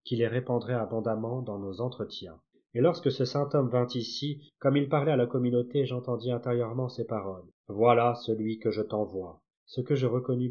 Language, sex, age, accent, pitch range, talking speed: French, male, 30-49, French, 110-135 Hz, 190 wpm